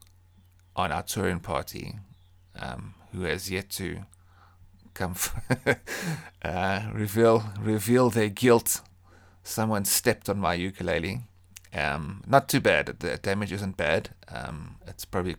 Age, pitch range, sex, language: 30-49, 90-110 Hz, male, English